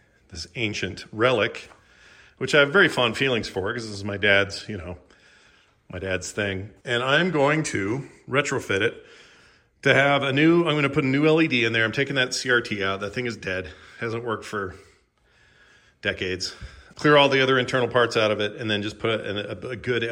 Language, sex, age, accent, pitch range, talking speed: English, male, 40-59, American, 100-130 Hz, 205 wpm